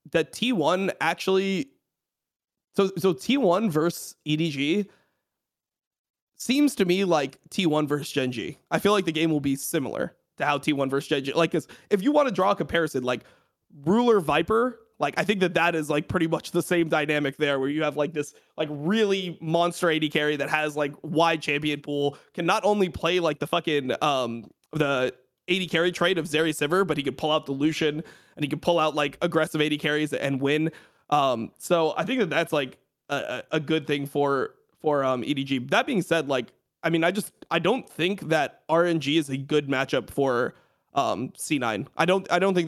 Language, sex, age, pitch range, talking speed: English, male, 20-39, 145-175 Hz, 205 wpm